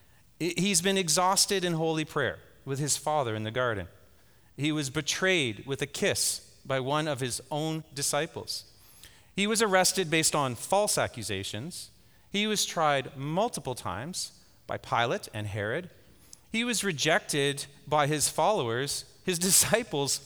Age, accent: 40-59, American